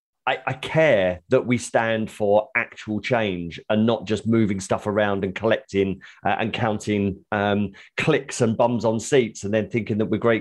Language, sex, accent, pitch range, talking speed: English, male, British, 95-110 Hz, 185 wpm